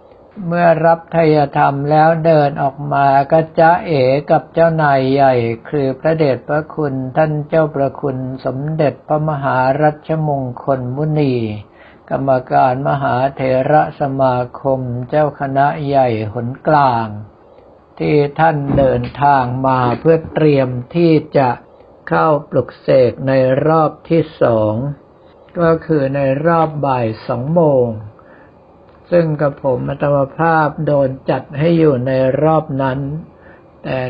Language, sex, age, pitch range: Thai, male, 60-79, 130-155 Hz